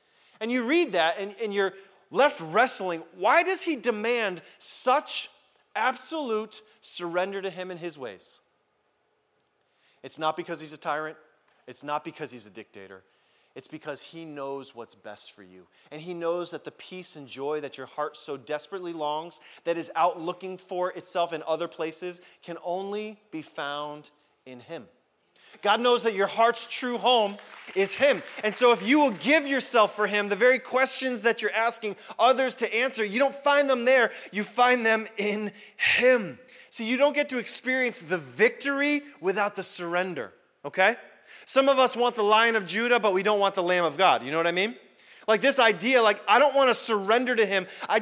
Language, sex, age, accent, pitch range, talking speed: English, male, 30-49, American, 165-240 Hz, 190 wpm